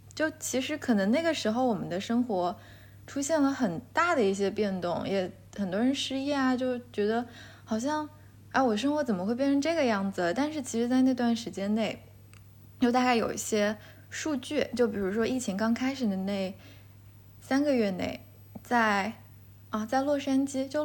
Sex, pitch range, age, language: female, 180-265 Hz, 20-39, Chinese